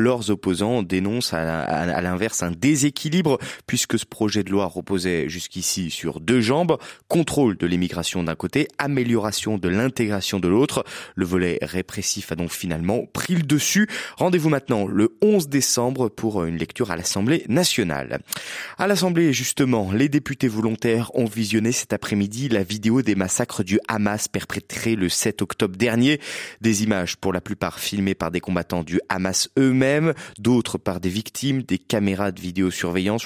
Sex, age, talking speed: male, 20-39, 160 wpm